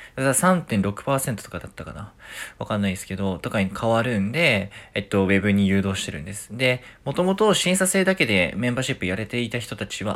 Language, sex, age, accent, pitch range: Japanese, male, 20-39, native, 100-125 Hz